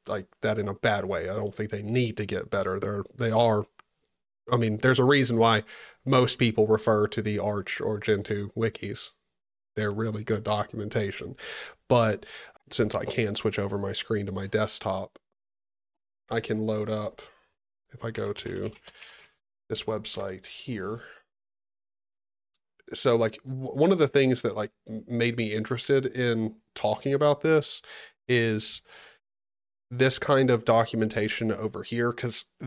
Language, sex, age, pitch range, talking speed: English, male, 30-49, 110-125 Hz, 150 wpm